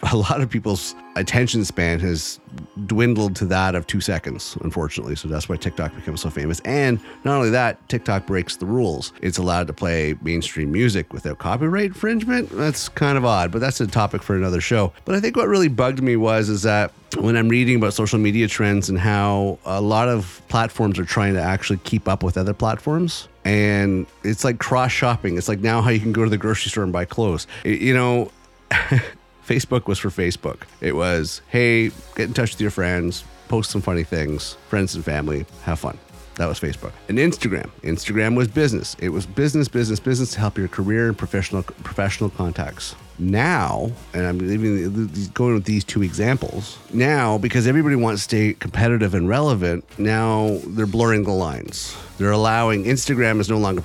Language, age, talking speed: English, 30-49, 195 wpm